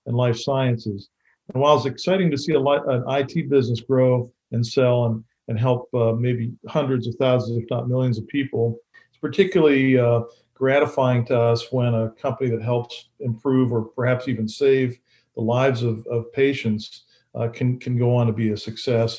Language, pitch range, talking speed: English, 115-135 Hz, 185 wpm